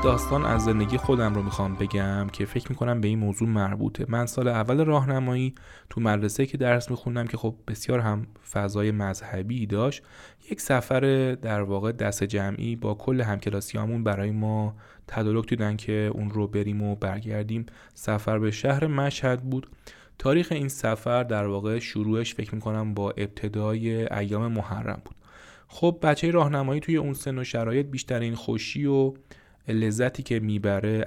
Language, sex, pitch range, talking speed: Persian, male, 105-130 Hz, 160 wpm